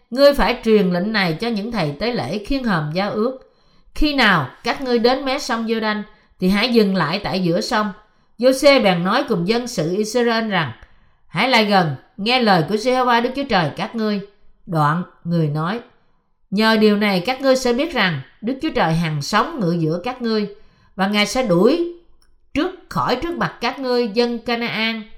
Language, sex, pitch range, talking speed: Vietnamese, female, 190-245 Hz, 200 wpm